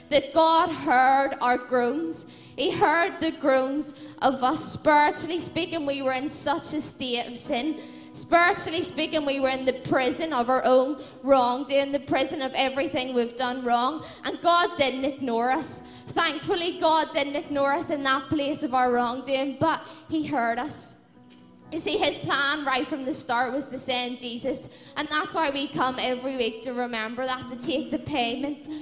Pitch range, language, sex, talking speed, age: 255-305 Hz, English, female, 175 wpm, 10-29